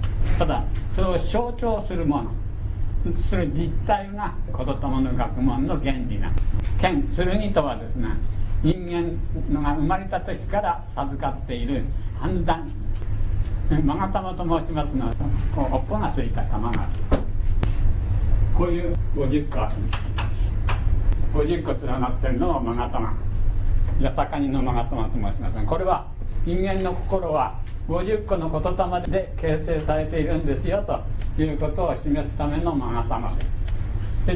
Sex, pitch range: male, 95-130 Hz